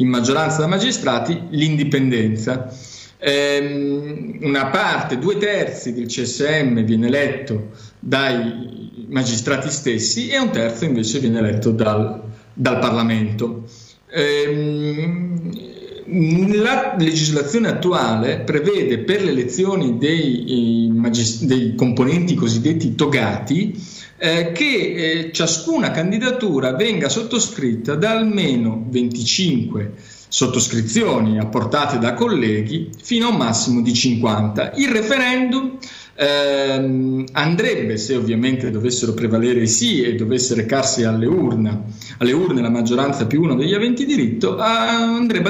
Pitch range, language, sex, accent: 115-170 Hz, Italian, male, native